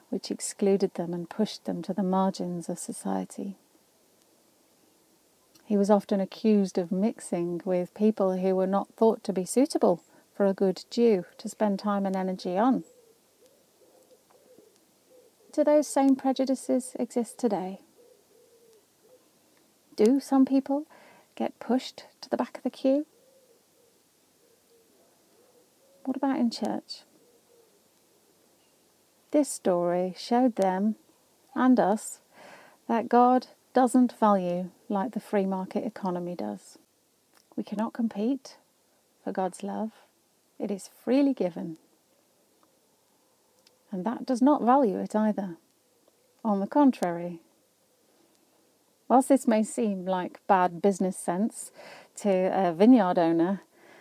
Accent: British